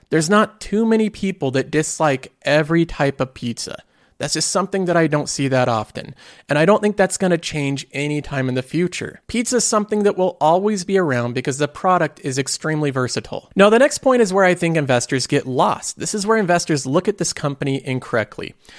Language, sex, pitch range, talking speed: English, male, 140-195 Hz, 215 wpm